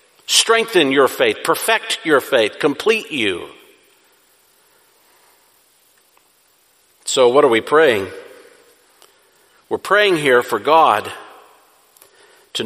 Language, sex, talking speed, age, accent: English, male, 90 wpm, 50-69, American